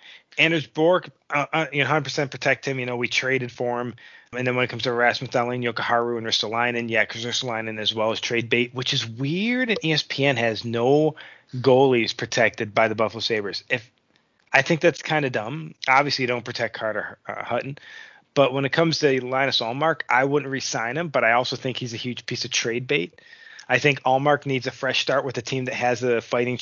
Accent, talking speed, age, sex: American, 215 wpm, 20-39, male